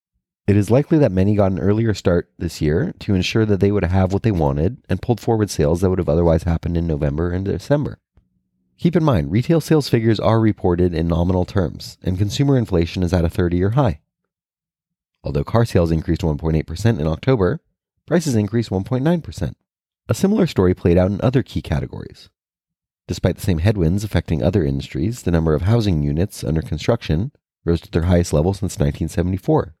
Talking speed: 185 wpm